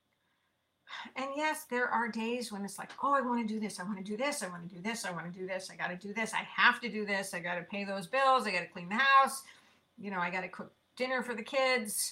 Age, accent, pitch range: 50-69, American, 190-230 Hz